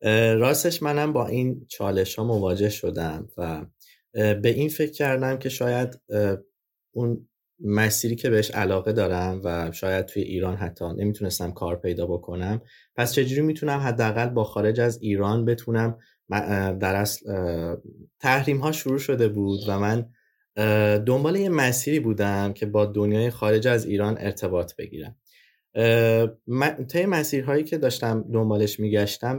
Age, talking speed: 20-39, 135 wpm